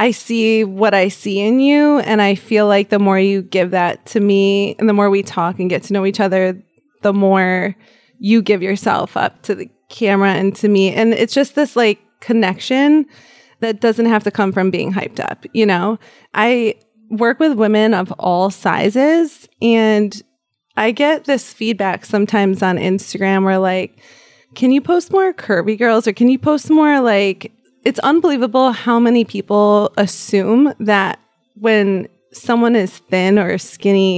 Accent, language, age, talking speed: American, English, 20-39, 175 wpm